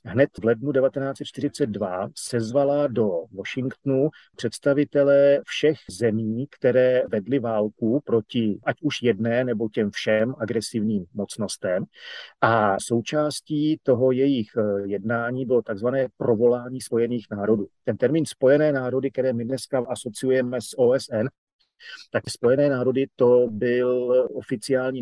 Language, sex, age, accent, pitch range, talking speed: Czech, male, 40-59, native, 110-135 Hz, 115 wpm